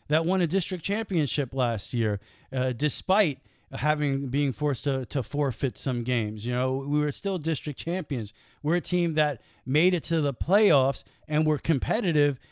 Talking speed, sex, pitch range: 175 wpm, male, 125-155 Hz